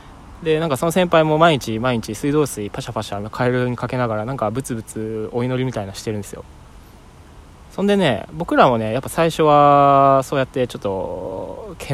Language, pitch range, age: Japanese, 110-155 Hz, 20-39